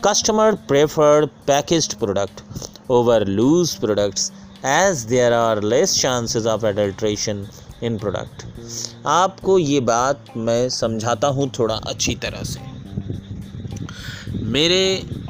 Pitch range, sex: 115-150 Hz, male